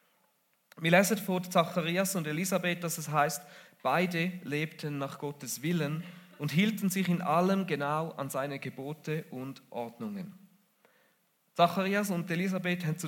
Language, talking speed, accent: German, 140 wpm, German